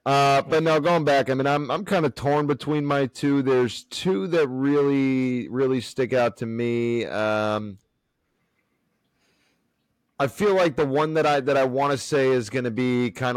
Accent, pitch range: American, 110-125 Hz